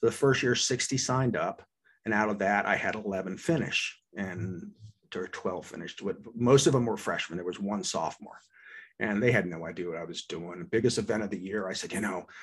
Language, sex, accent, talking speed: English, male, American, 210 wpm